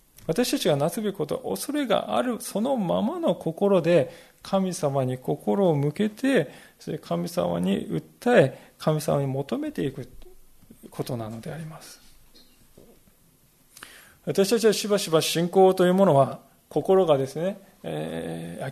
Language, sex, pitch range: Japanese, male, 140-195 Hz